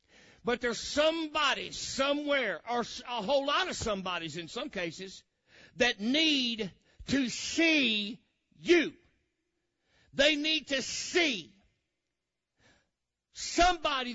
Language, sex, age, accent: English, male, 60-79, American